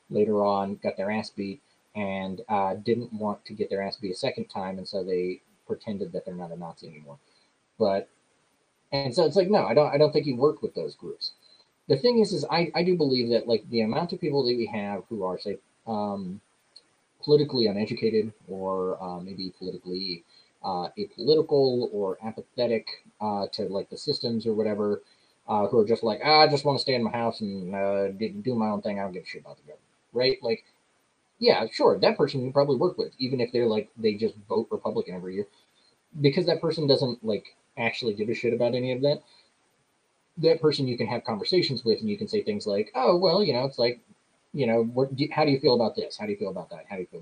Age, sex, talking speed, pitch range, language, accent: 30-49, male, 230 wpm, 105-150 Hz, English, American